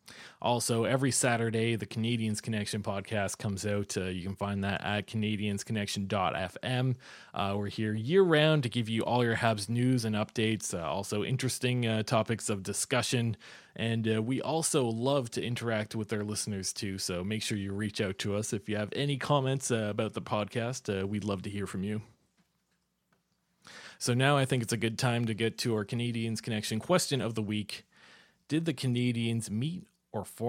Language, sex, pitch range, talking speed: English, male, 105-120 Hz, 185 wpm